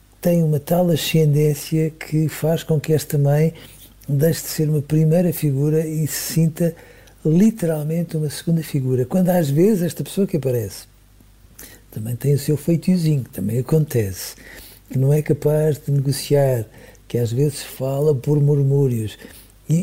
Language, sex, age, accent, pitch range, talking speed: Portuguese, male, 60-79, Portuguese, 125-165 Hz, 150 wpm